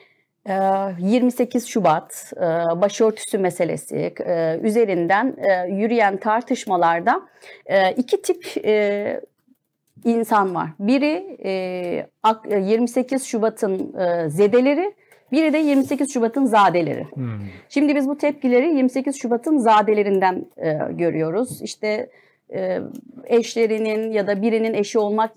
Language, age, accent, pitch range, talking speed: Turkish, 40-59, native, 195-235 Hz, 85 wpm